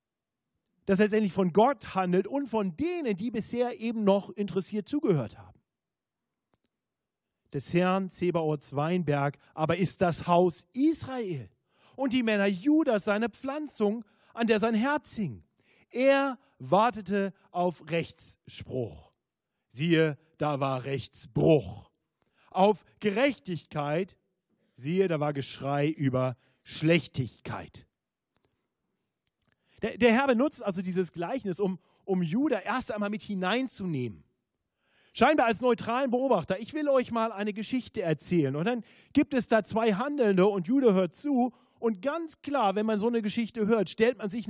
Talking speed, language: 130 wpm, German